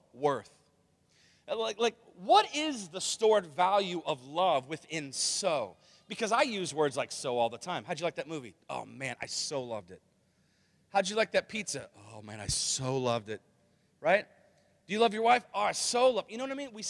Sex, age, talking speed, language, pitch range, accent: male, 30-49, 215 wpm, English, 150-205 Hz, American